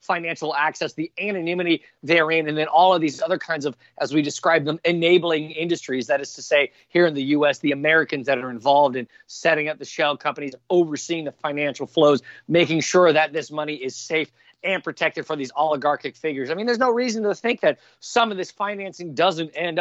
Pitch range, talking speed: 150-190 Hz, 210 wpm